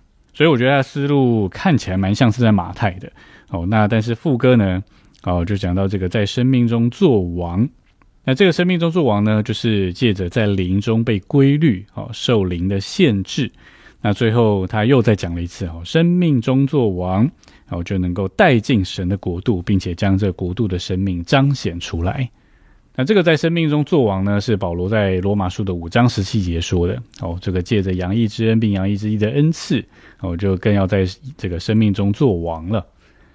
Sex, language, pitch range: male, Chinese, 95-120 Hz